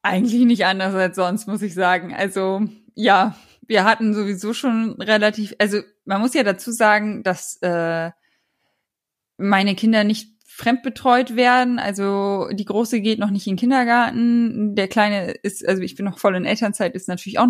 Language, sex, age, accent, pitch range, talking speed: German, female, 20-39, German, 180-225 Hz, 170 wpm